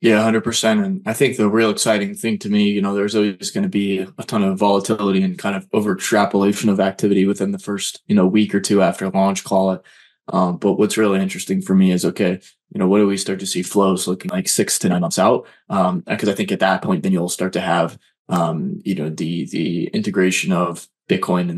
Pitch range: 95-110 Hz